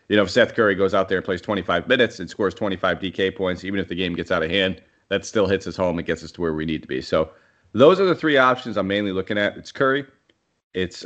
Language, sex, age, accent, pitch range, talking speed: English, male, 30-49, American, 90-115 Hz, 280 wpm